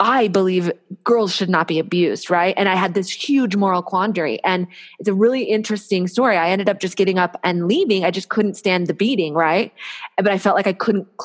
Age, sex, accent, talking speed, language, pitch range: 20-39, female, American, 225 wpm, English, 175-200 Hz